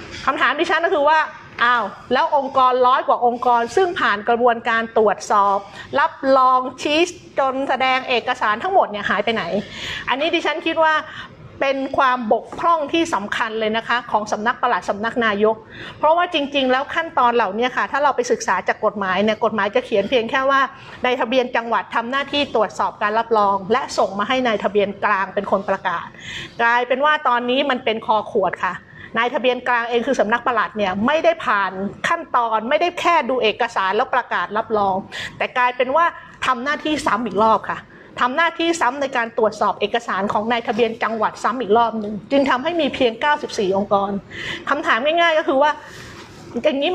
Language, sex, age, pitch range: Thai, female, 30-49, 220-290 Hz